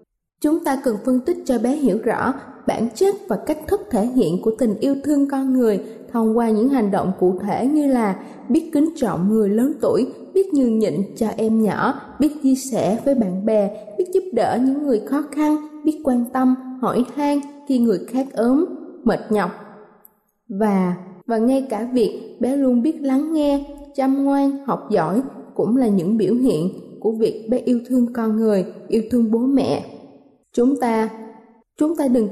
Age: 20-39